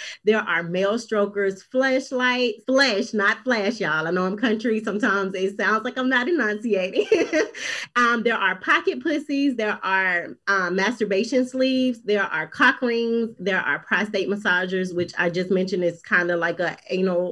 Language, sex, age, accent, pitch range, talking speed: English, female, 30-49, American, 185-240 Hz, 165 wpm